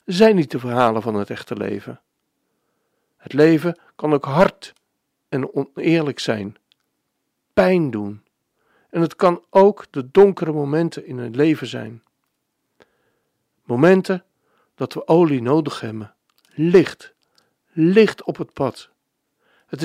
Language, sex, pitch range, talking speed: Dutch, male, 130-195 Hz, 125 wpm